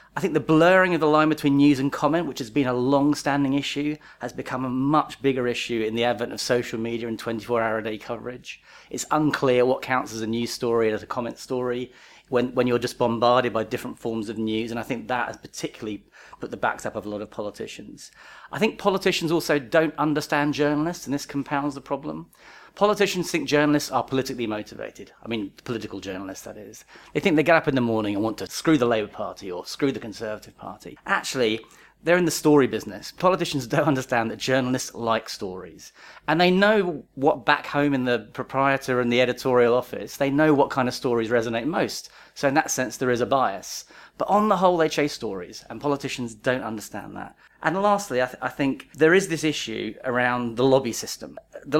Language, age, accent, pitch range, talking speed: English, 30-49, British, 115-150 Hz, 210 wpm